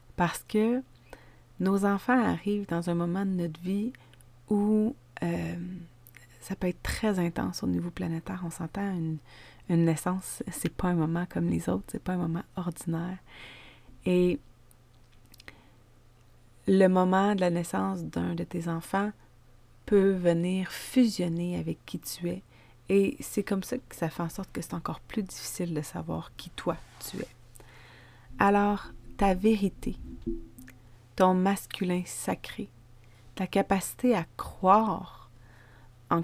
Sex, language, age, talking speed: female, French, 30-49, 145 wpm